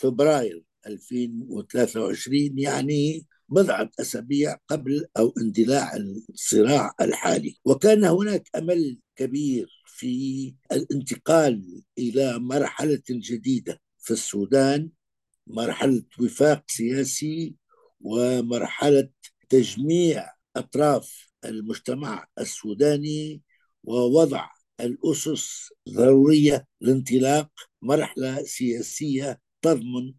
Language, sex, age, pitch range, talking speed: Arabic, male, 60-79, 120-150 Hz, 70 wpm